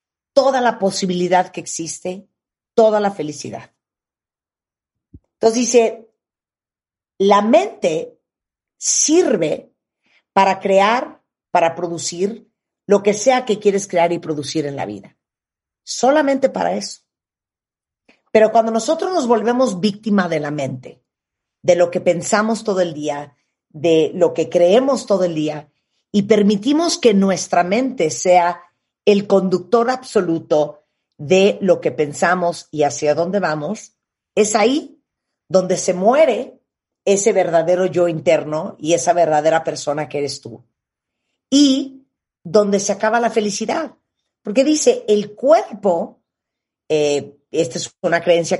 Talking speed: 125 wpm